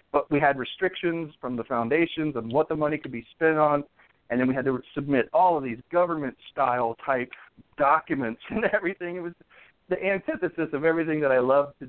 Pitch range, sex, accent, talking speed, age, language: 130-175 Hz, male, American, 195 wpm, 40-59, English